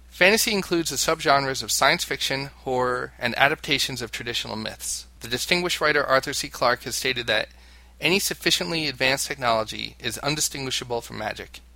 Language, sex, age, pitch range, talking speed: English, male, 30-49, 110-140 Hz, 155 wpm